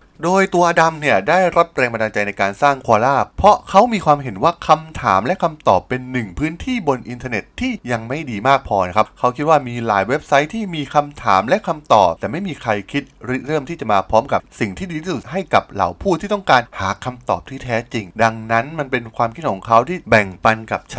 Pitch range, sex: 110-160 Hz, male